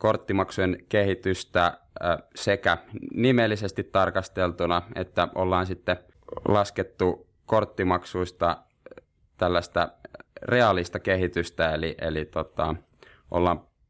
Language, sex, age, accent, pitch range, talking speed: Finnish, male, 20-39, native, 85-95 Hz, 70 wpm